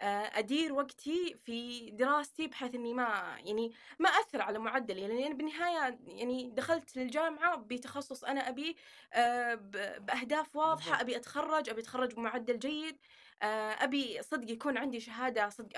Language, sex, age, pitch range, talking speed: Arabic, female, 20-39, 220-270 Hz, 135 wpm